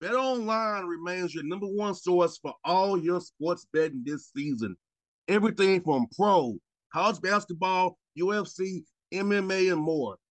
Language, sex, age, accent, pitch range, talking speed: English, male, 30-49, American, 160-200 Hz, 130 wpm